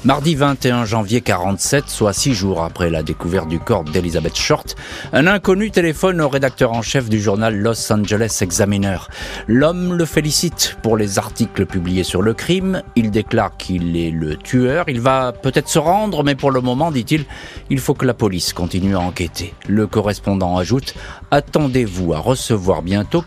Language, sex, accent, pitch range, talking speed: French, male, French, 95-125 Hz, 175 wpm